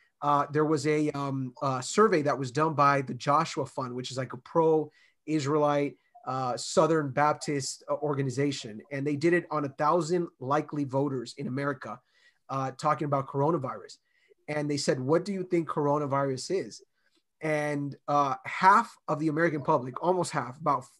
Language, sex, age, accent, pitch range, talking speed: English, male, 30-49, American, 145-185 Hz, 155 wpm